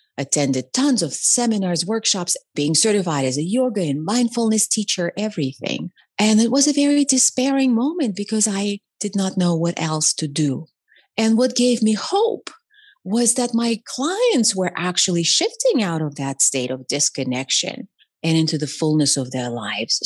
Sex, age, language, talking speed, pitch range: female, 30-49, English, 165 wpm, 150-235 Hz